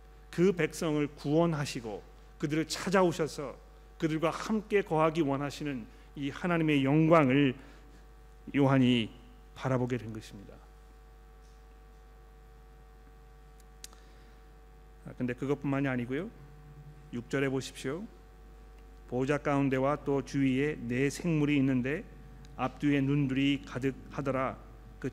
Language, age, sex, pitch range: Korean, 40-59, male, 135-165 Hz